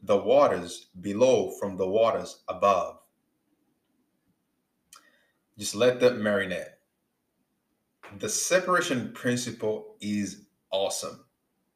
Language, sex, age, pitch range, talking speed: English, male, 20-39, 105-155 Hz, 80 wpm